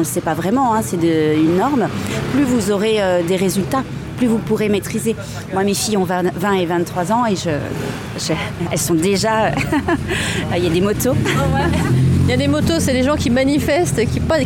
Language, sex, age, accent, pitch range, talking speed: French, female, 30-49, French, 170-225 Hz, 210 wpm